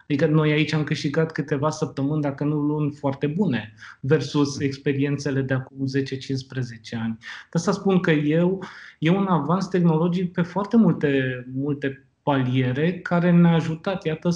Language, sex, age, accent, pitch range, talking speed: Romanian, male, 20-39, native, 135-175 Hz, 150 wpm